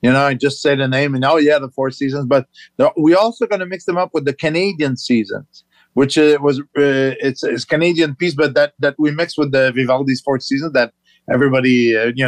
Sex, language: male, English